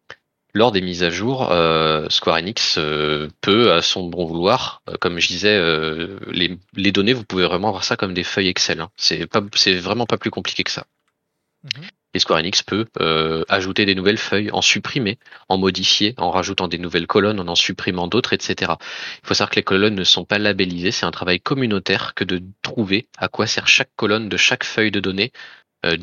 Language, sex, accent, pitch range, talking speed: French, male, French, 85-100 Hz, 205 wpm